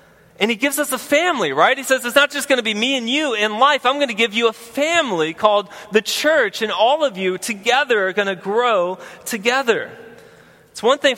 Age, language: 20-39, English